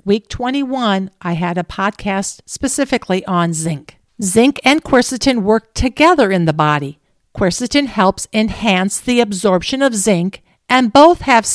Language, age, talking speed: English, 50-69, 140 wpm